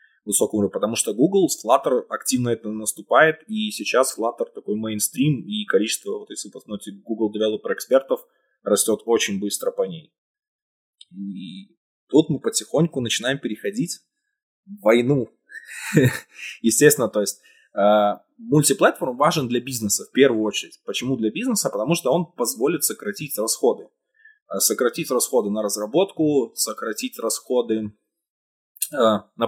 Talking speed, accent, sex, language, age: 125 wpm, native, male, Russian, 20-39